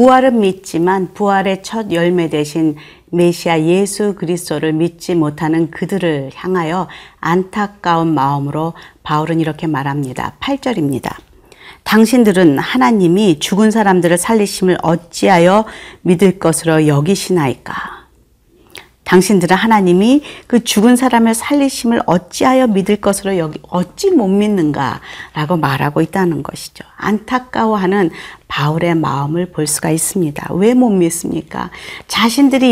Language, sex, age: Korean, female, 40-59